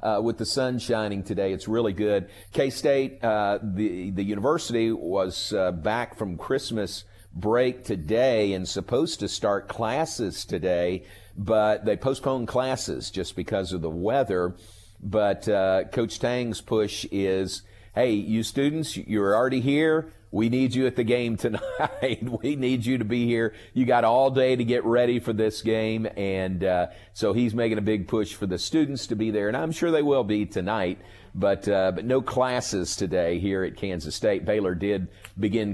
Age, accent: 50-69, American